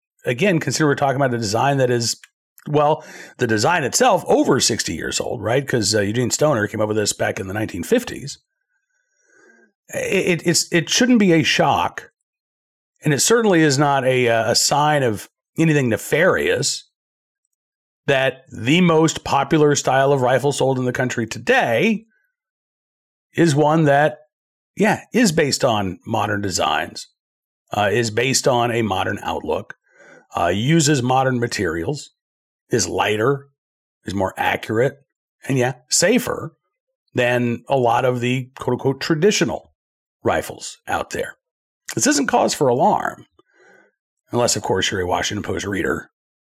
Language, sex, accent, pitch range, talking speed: English, male, American, 125-190 Hz, 145 wpm